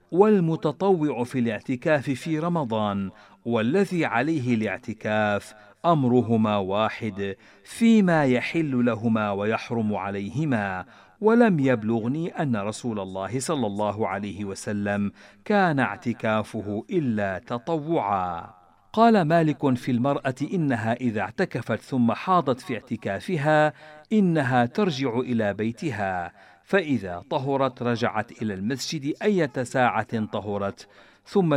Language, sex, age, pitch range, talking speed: Arabic, male, 50-69, 110-155 Hz, 100 wpm